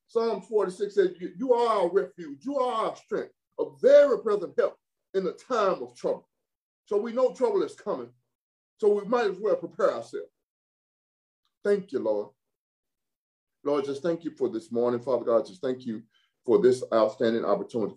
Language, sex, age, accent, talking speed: English, male, 40-59, American, 175 wpm